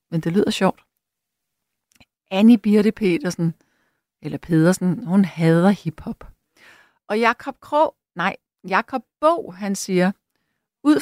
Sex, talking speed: female, 115 wpm